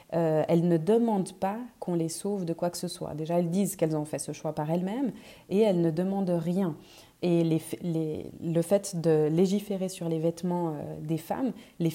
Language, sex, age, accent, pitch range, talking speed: German, female, 30-49, French, 165-200 Hz, 210 wpm